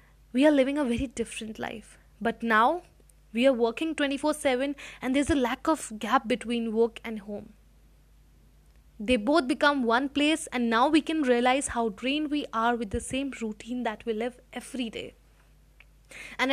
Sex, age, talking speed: female, 20-39, 170 wpm